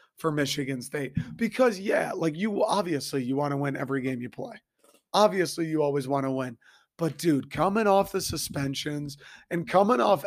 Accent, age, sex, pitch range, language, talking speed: American, 30-49, male, 140-165 Hz, English, 180 wpm